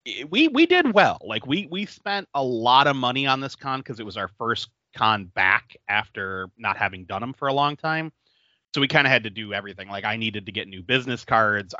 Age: 30-49